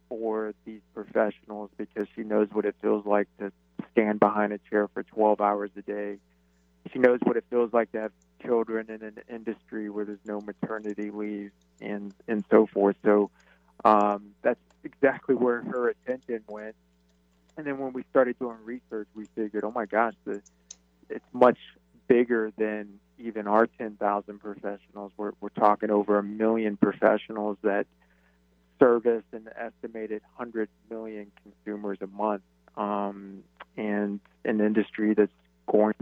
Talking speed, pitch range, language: 155 wpm, 100-110 Hz, English